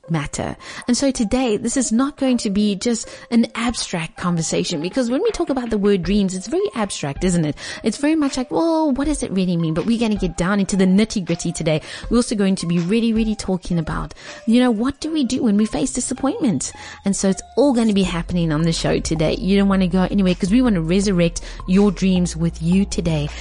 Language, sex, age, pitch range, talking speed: English, female, 30-49, 170-220 Hz, 240 wpm